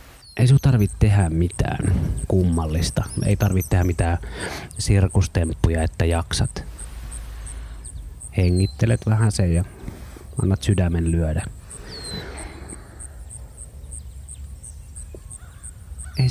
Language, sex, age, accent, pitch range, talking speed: Finnish, male, 30-49, native, 85-100 Hz, 75 wpm